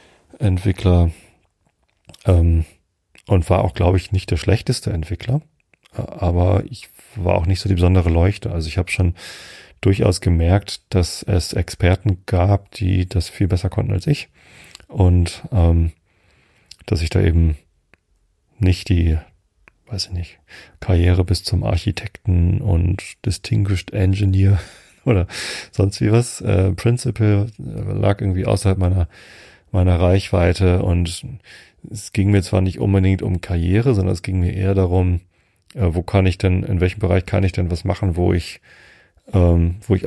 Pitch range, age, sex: 85-100 Hz, 40-59, male